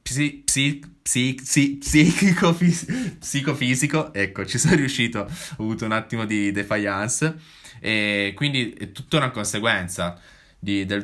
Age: 20-39